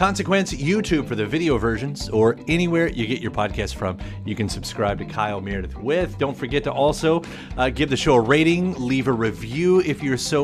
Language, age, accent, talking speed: English, 30-49, American, 205 wpm